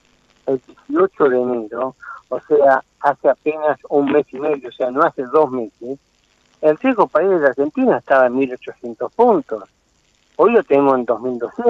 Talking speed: 170 wpm